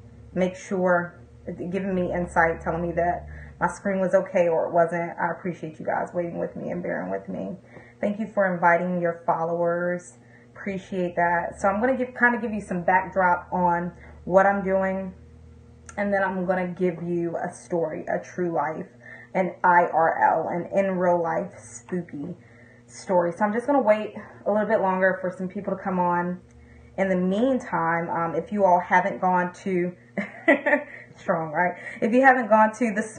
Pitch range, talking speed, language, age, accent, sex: 170-195 Hz, 185 wpm, English, 20-39, American, female